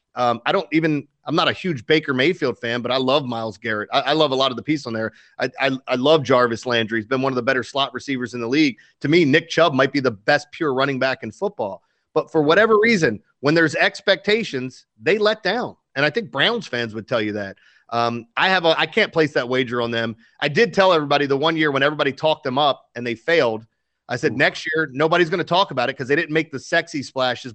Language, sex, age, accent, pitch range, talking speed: English, male, 30-49, American, 125-160 Hz, 255 wpm